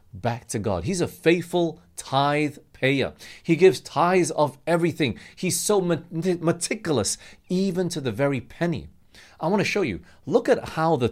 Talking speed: 160 wpm